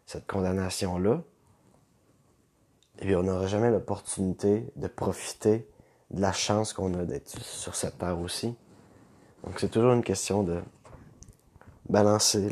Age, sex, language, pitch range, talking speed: 20-39, male, French, 90-105 Hz, 130 wpm